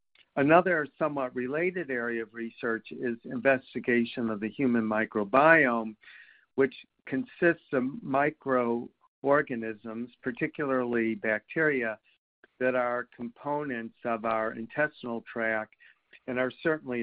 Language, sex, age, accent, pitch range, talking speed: English, male, 50-69, American, 115-135 Hz, 100 wpm